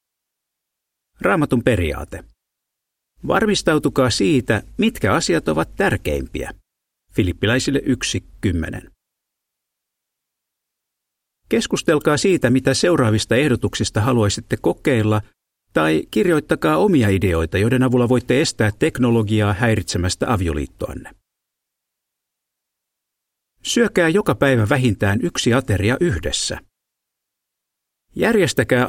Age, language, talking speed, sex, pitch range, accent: 50-69, Finnish, 75 wpm, male, 95-135 Hz, native